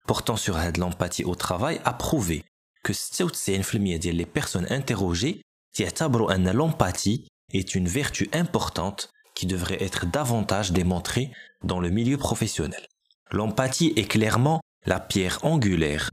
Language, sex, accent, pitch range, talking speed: French, male, French, 90-120 Hz, 120 wpm